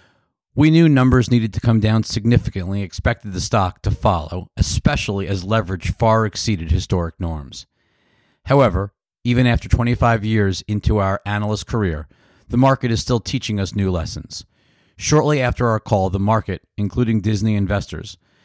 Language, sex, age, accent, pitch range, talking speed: English, male, 40-59, American, 95-115 Hz, 150 wpm